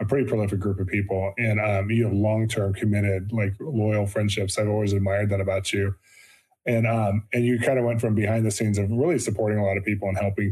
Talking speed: 235 wpm